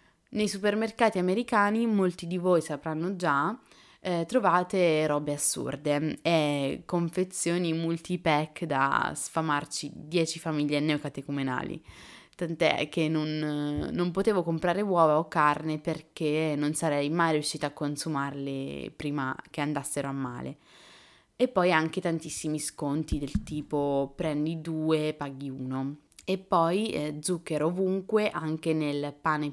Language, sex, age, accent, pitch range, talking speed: Italian, female, 20-39, native, 150-180 Hz, 120 wpm